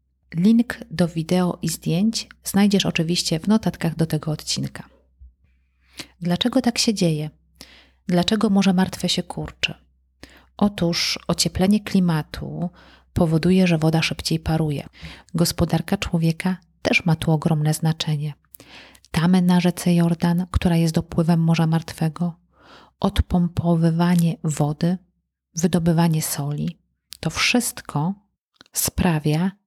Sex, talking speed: female, 105 wpm